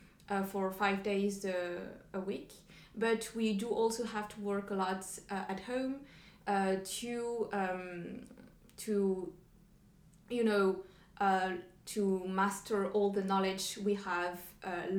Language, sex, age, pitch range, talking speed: English, female, 20-39, 190-215 Hz, 135 wpm